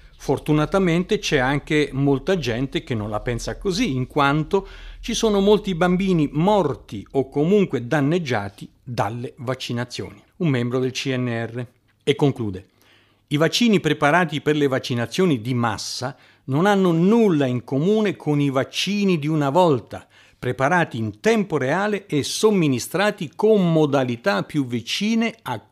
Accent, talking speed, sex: native, 135 wpm, male